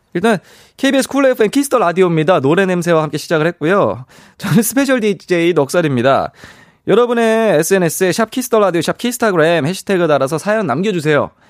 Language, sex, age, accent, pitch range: Korean, male, 20-39, native, 125-200 Hz